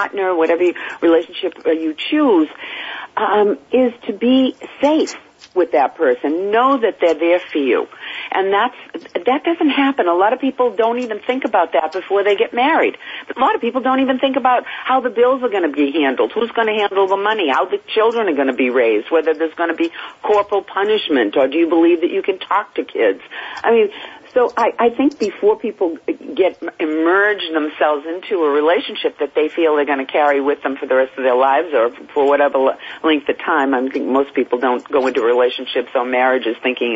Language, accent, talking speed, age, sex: English, American, 210 wpm, 50-69, female